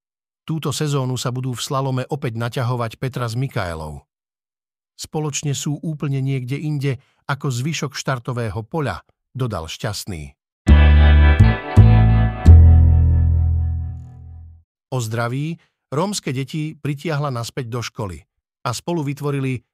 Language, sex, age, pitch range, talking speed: Slovak, male, 50-69, 115-150 Hz, 100 wpm